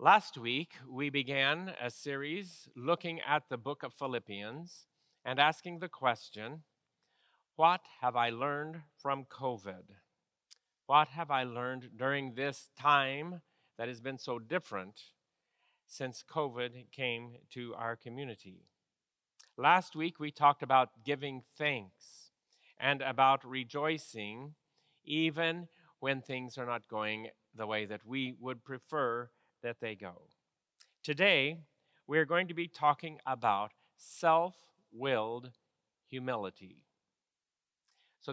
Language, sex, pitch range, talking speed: English, male, 120-160 Hz, 115 wpm